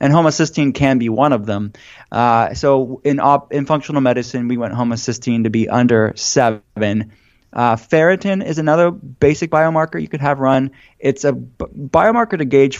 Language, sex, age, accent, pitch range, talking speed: English, male, 20-39, American, 115-135 Hz, 165 wpm